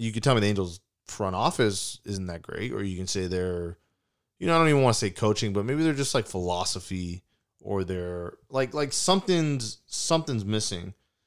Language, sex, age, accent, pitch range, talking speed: English, male, 20-39, American, 95-115 Hz, 200 wpm